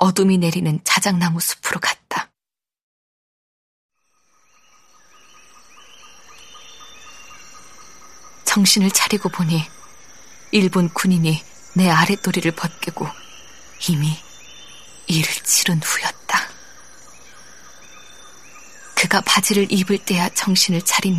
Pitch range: 170-200 Hz